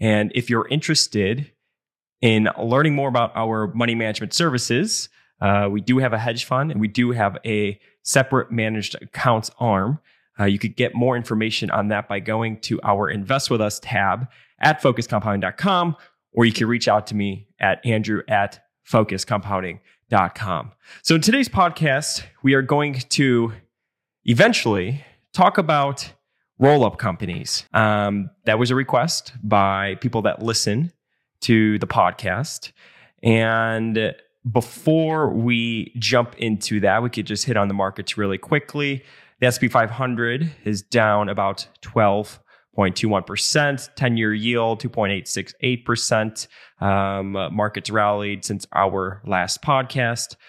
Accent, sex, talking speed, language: American, male, 135 wpm, English